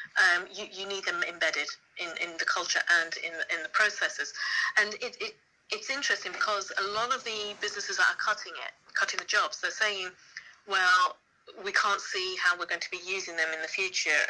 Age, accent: 40-59, British